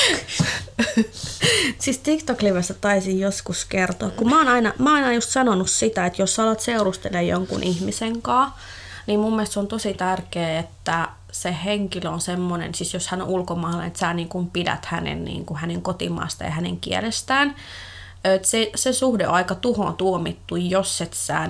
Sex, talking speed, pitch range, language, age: female, 165 wpm, 170-215 Hz, Finnish, 20-39